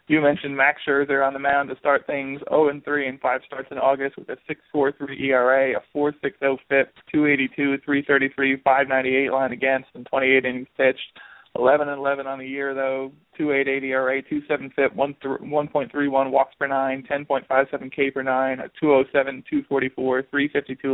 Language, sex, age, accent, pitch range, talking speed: English, male, 20-39, American, 130-145 Hz, 145 wpm